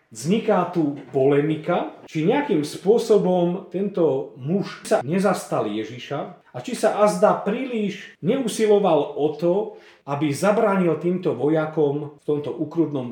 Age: 40-59